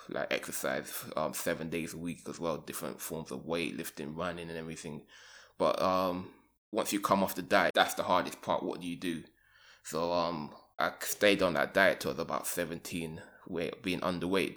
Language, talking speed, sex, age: English, 200 wpm, male, 20-39